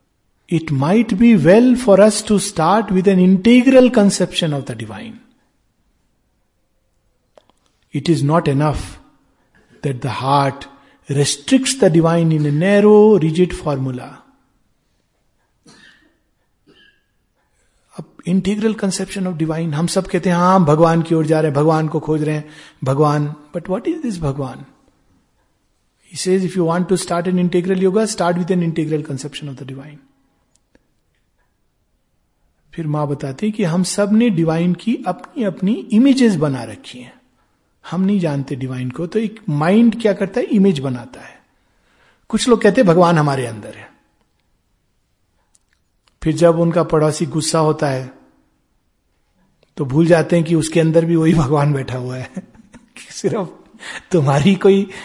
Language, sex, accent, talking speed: Hindi, male, native, 145 wpm